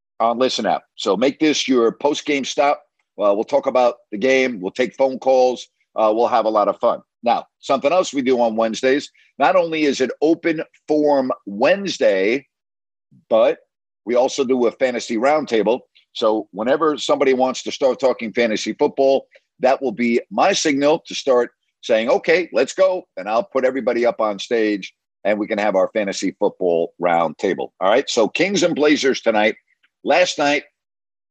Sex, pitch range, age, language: male, 105-140 Hz, 50-69, English